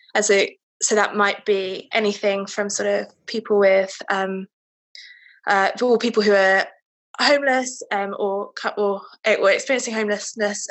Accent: British